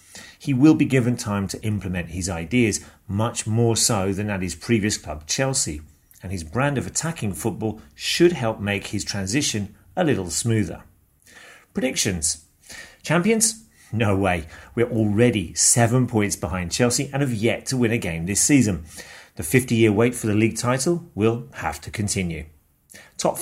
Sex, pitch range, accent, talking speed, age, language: male, 95-125 Hz, British, 160 wpm, 40-59, English